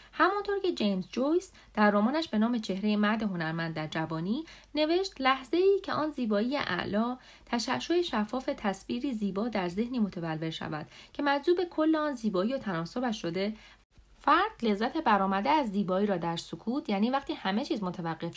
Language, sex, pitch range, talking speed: Persian, female, 195-290 Hz, 155 wpm